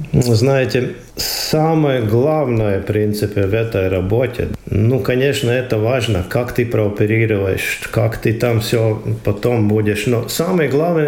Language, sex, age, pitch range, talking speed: Russian, male, 50-69, 115-145 Hz, 135 wpm